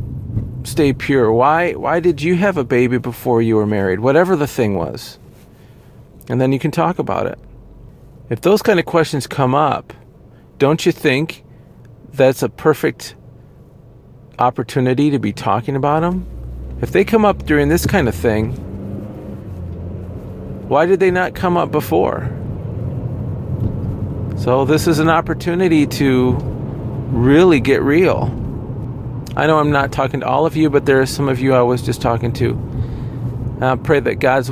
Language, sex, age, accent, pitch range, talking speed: English, male, 50-69, American, 120-145 Hz, 160 wpm